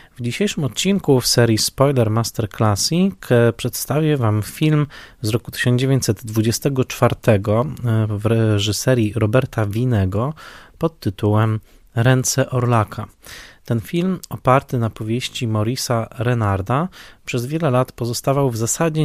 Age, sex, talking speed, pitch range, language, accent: 20-39, male, 110 wpm, 105-130 Hz, Polish, native